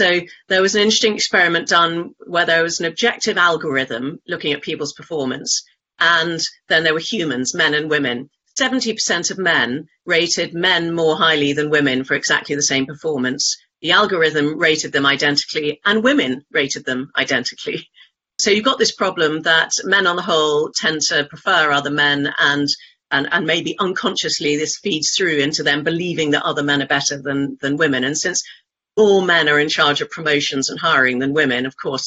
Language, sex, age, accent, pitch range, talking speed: English, female, 40-59, British, 145-200 Hz, 185 wpm